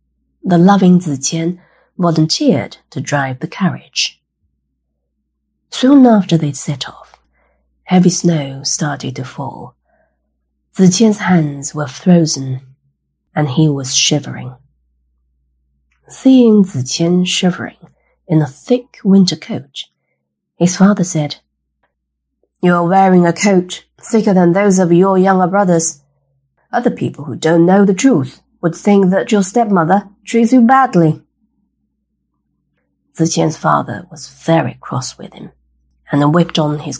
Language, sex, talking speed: English, female, 120 wpm